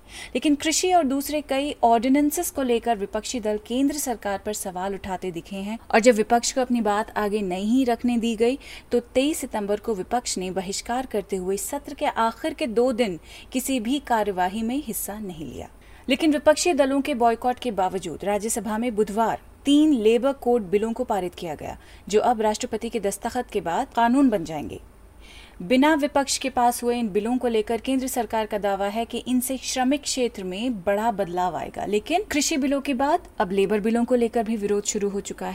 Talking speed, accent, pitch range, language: 195 wpm, native, 210-265 Hz, Hindi